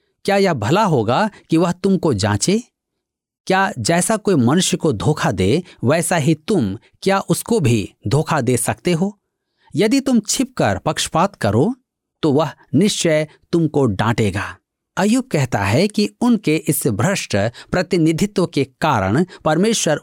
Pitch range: 125-195 Hz